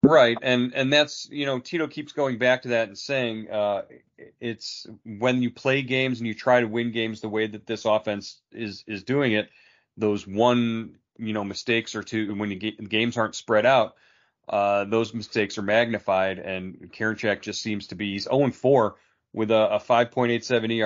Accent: American